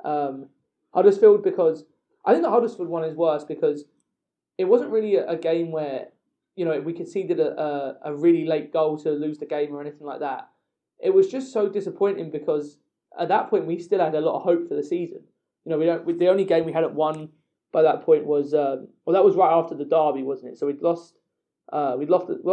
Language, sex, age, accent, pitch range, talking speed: English, male, 20-39, British, 150-205 Hz, 230 wpm